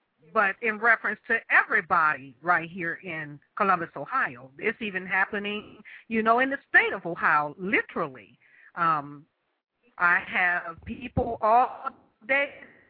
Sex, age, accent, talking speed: female, 50-69, American, 125 wpm